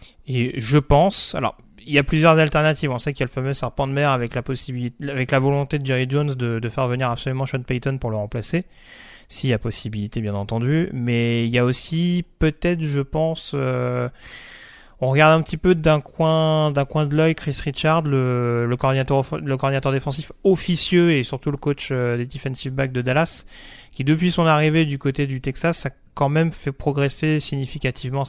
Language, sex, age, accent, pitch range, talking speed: French, male, 30-49, French, 125-155 Hz, 205 wpm